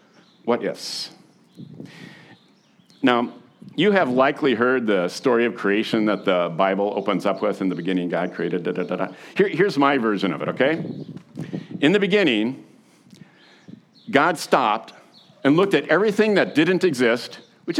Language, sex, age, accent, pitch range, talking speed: English, male, 50-69, American, 110-150 Hz, 155 wpm